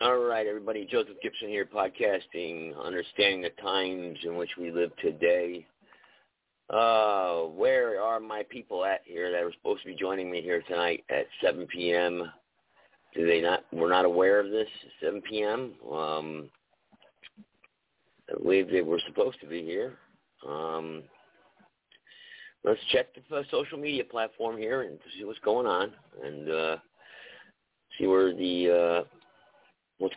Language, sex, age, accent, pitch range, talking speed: English, male, 50-69, American, 85-120 Hz, 150 wpm